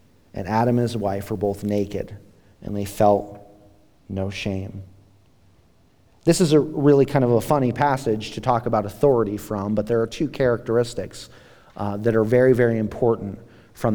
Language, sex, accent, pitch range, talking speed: English, male, American, 105-140 Hz, 170 wpm